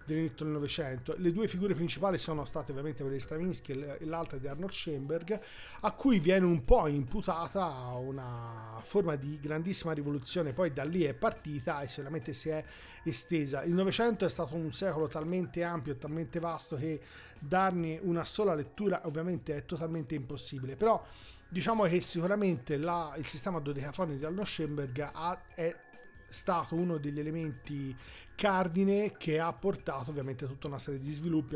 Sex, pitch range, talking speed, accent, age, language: male, 145-180 Hz, 160 wpm, native, 40-59, Italian